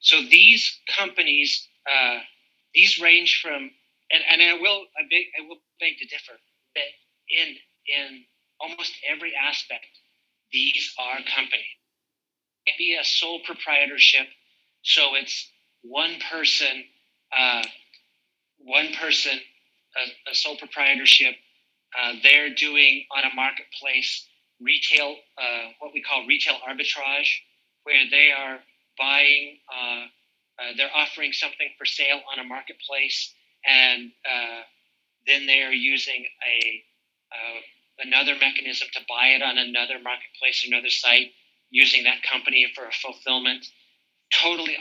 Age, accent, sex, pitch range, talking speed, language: 40-59, American, male, 125-145 Hz, 125 wpm, English